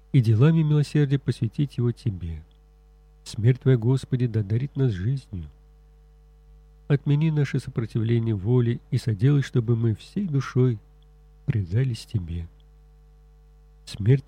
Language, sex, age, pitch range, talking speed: Russian, male, 50-69, 115-145 Hz, 110 wpm